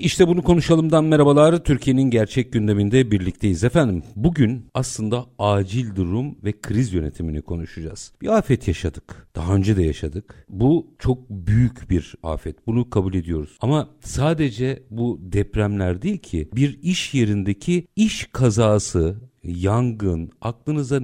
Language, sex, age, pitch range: Turkish, male, 50-69, 95-135 Hz